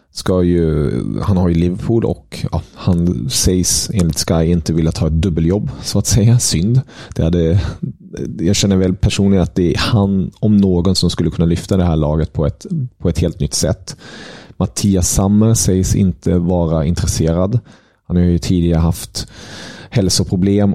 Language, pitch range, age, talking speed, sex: Swedish, 85-100 Hz, 30-49, 170 wpm, male